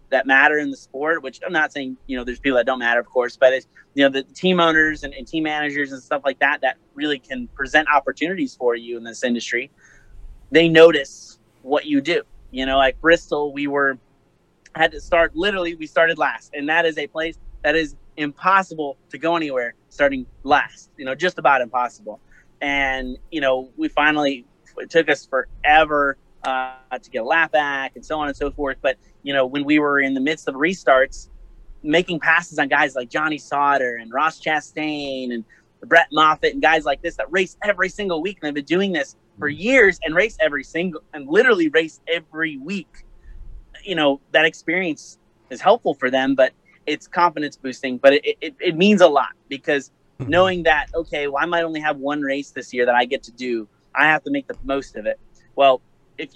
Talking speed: 210 wpm